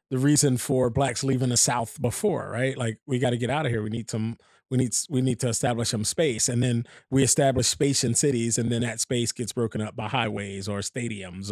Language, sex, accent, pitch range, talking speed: English, male, American, 105-125 Hz, 240 wpm